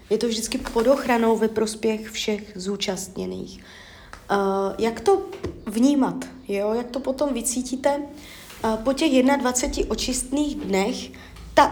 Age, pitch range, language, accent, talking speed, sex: 30-49, 200-245 Hz, Czech, native, 115 wpm, female